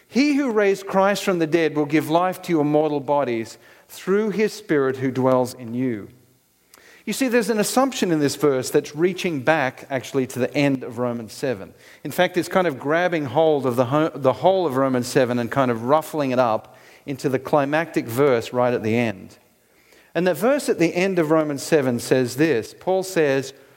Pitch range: 120-170 Hz